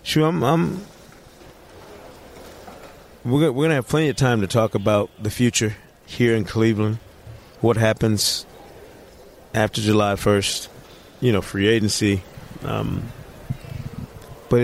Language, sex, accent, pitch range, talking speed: English, male, American, 110-130 Hz, 115 wpm